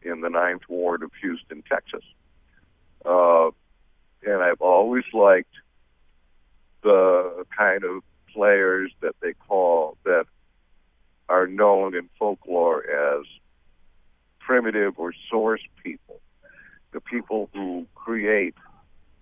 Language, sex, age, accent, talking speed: English, male, 60-79, American, 105 wpm